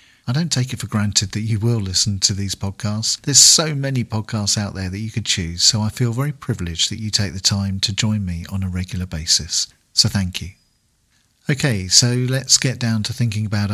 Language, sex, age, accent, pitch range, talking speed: English, male, 50-69, British, 100-125 Hz, 225 wpm